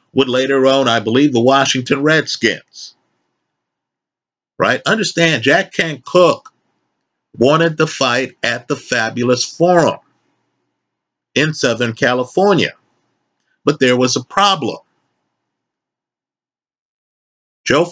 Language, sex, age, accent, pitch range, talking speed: English, male, 50-69, American, 130-170 Hz, 95 wpm